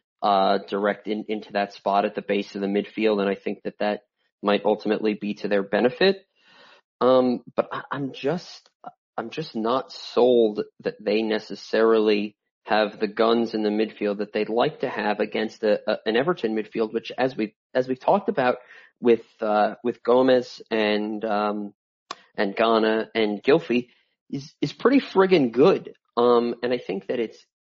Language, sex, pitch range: English, male, 105-130 Hz